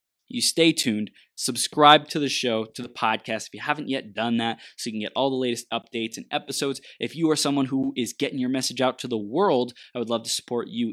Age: 20-39